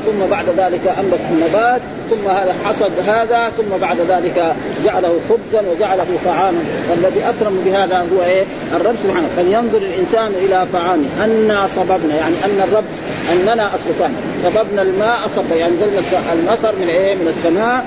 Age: 40-59